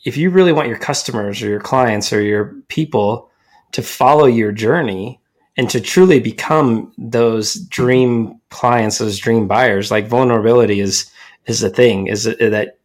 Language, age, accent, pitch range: English, 20-39, American, 115-140 Hz